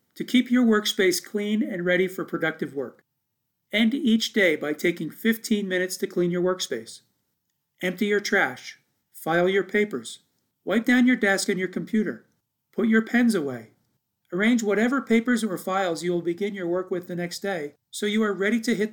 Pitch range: 165-215 Hz